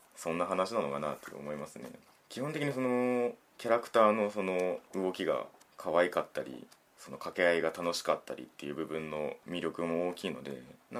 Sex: male